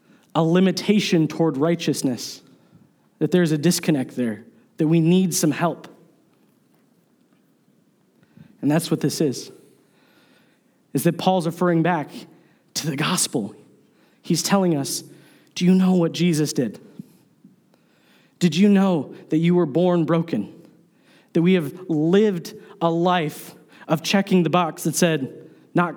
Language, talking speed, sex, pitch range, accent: English, 130 wpm, male, 160-195 Hz, American